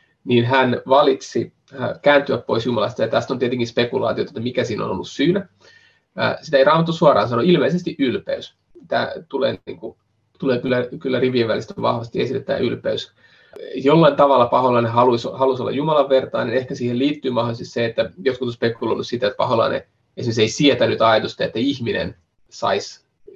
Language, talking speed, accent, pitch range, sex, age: Finnish, 165 wpm, native, 125-160 Hz, male, 30-49